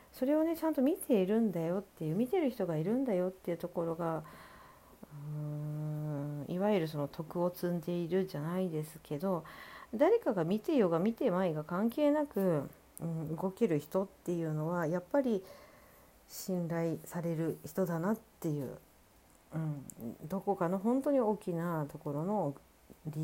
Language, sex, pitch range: Japanese, female, 150-200 Hz